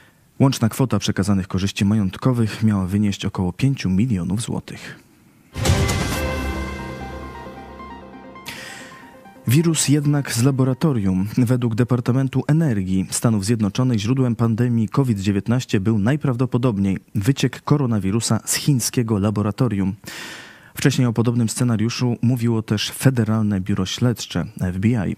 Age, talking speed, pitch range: 20-39, 95 wpm, 100-125 Hz